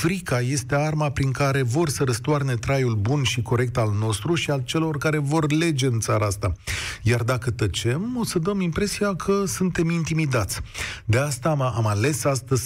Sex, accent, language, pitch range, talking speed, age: male, native, Romanian, 120-165 Hz, 185 wpm, 40-59